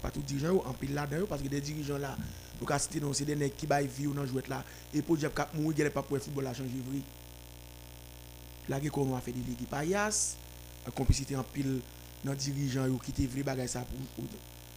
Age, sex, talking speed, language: 50-69, male, 170 wpm, French